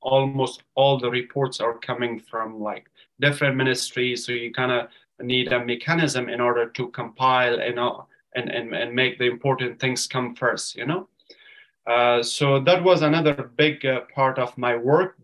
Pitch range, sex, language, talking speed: 120-150 Hz, male, English, 175 wpm